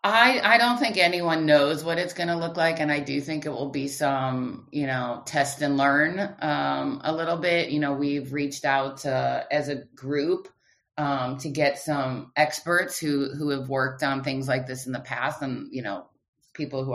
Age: 30-49